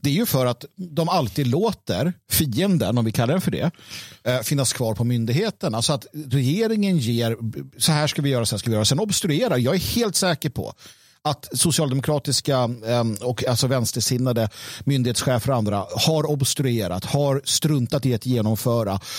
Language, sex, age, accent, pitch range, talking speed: Swedish, male, 50-69, native, 120-155 Hz, 175 wpm